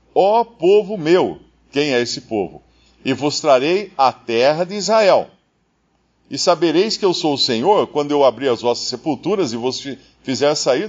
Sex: male